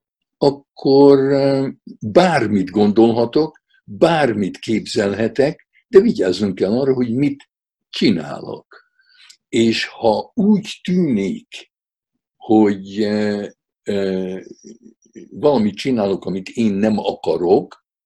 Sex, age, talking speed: male, 60-79, 75 wpm